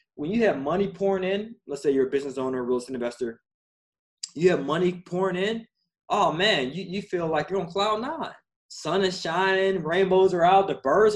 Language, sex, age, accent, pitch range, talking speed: English, male, 20-39, American, 155-215 Hz, 205 wpm